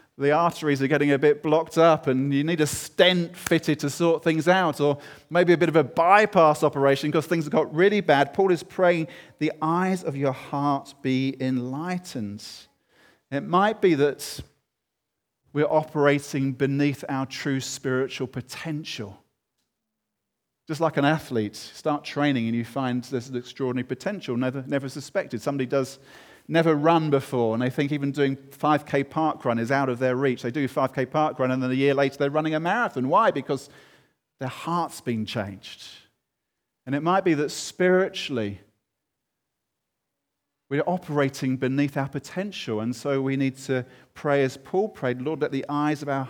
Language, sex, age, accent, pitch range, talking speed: English, male, 40-59, British, 130-155 Hz, 170 wpm